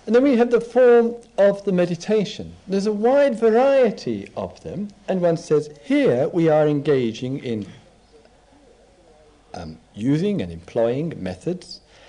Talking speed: 140 wpm